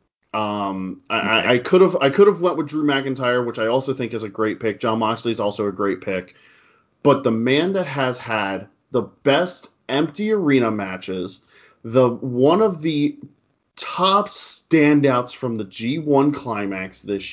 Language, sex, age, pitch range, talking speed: English, male, 20-39, 115-160 Hz, 170 wpm